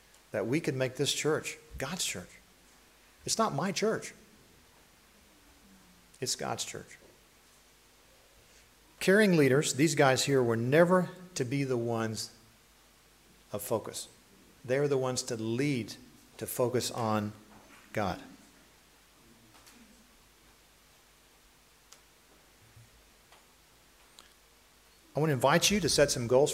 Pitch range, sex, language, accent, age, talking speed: 115-150 Hz, male, English, American, 40-59, 100 wpm